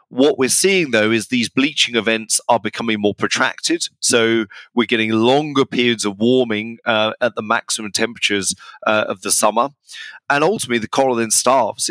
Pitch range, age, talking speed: 110-130 Hz, 30-49, 170 wpm